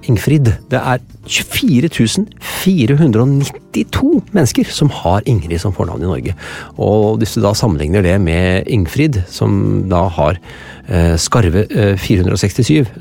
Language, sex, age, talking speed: English, male, 30-49, 110 wpm